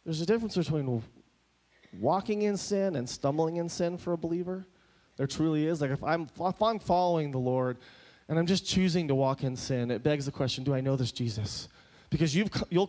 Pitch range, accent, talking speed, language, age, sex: 140-205 Hz, American, 210 wpm, English, 30-49, male